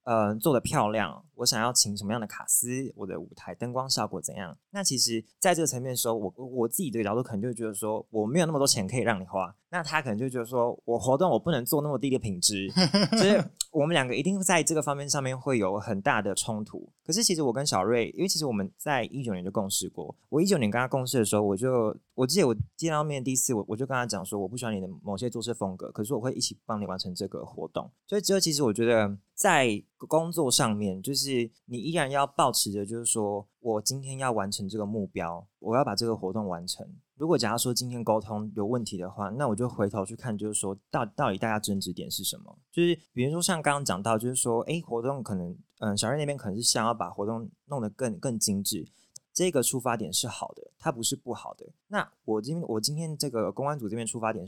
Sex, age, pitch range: male, 20-39, 105-140 Hz